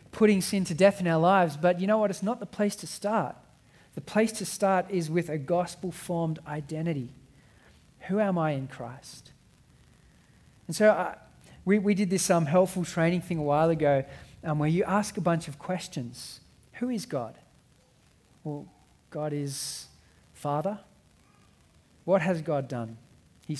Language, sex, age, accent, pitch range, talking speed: English, male, 40-59, Australian, 140-190 Hz, 165 wpm